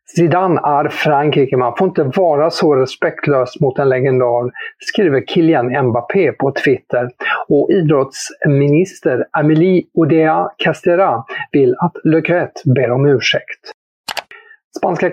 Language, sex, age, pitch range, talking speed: English, male, 50-69, 130-175 Hz, 115 wpm